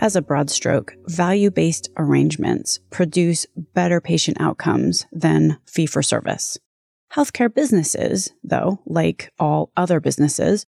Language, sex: English, female